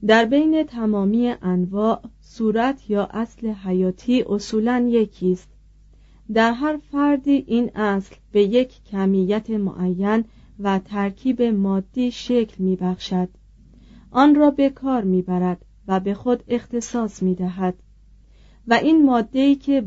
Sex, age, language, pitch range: female, 40-59, Persian, 190-235 Hz